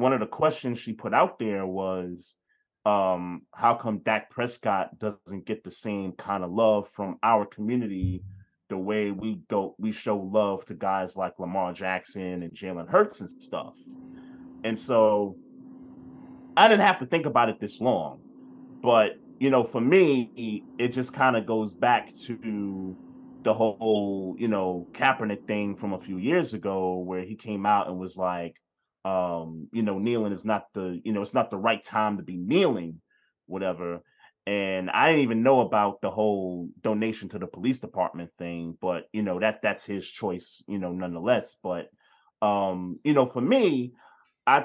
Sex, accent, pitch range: male, American, 95-120 Hz